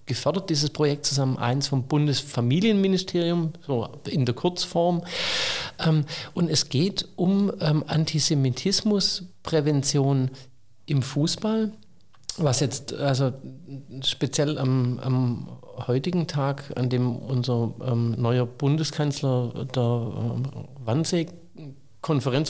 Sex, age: male, 50-69